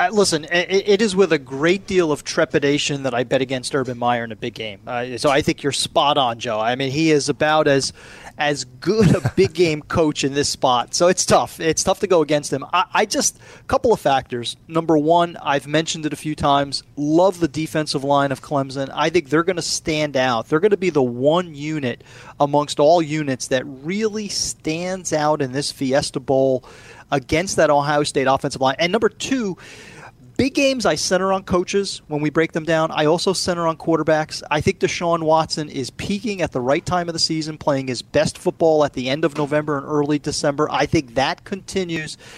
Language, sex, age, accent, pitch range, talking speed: English, male, 30-49, American, 140-175 Hz, 210 wpm